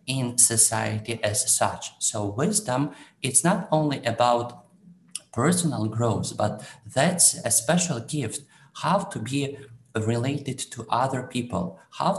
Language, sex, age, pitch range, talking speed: English, male, 50-69, 110-150 Hz, 125 wpm